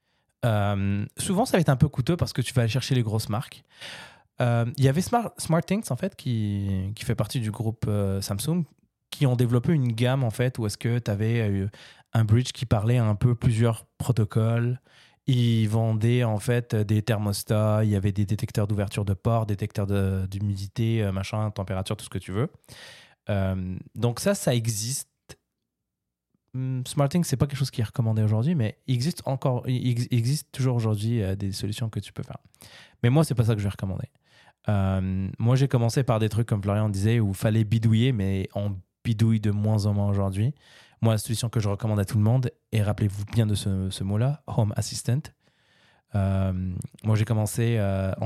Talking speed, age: 205 wpm, 20-39